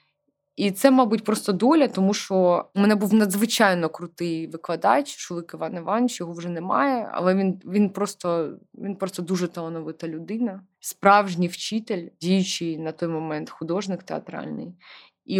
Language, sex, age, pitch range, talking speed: Russian, female, 20-39, 180-235 Hz, 140 wpm